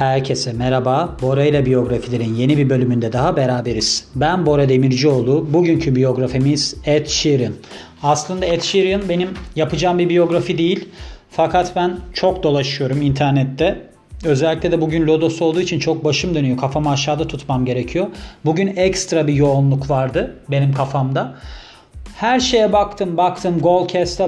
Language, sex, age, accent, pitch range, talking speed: Turkish, male, 40-59, native, 140-180 Hz, 135 wpm